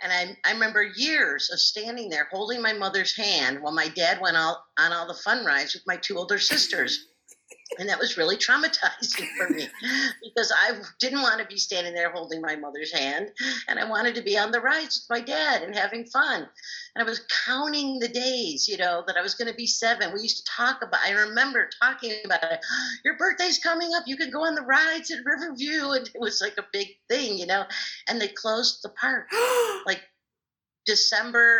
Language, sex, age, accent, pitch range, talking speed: English, female, 50-69, American, 185-255 Hz, 215 wpm